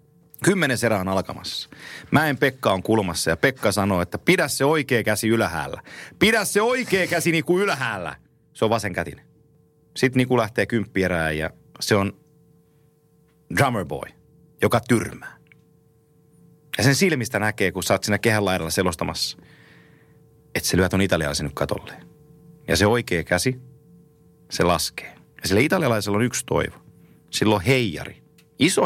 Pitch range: 100-150 Hz